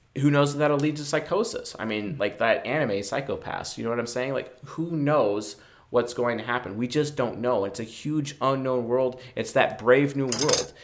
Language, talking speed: English, 215 wpm